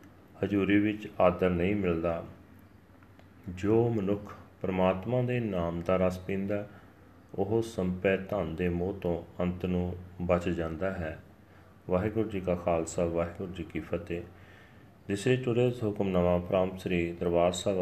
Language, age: Punjabi, 30-49